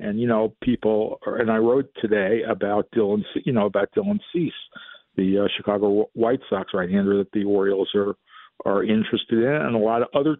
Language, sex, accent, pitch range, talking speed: English, male, American, 105-130 Hz, 195 wpm